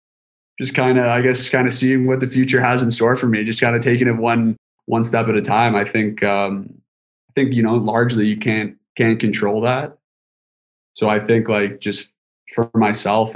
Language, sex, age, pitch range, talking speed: English, male, 20-39, 105-115 Hz, 210 wpm